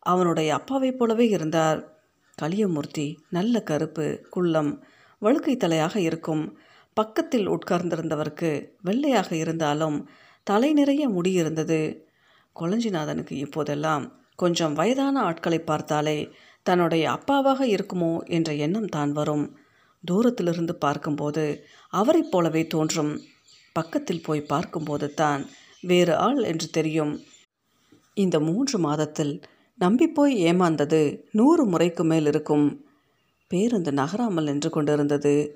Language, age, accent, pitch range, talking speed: Tamil, 50-69, native, 150-200 Hz, 95 wpm